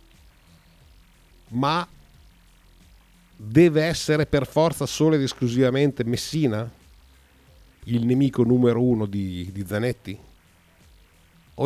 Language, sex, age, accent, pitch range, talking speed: Italian, male, 50-69, native, 85-130 Hz, 90 wpm